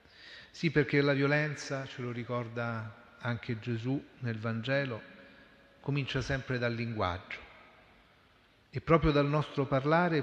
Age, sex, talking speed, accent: 40-59, male, 115 wpm, native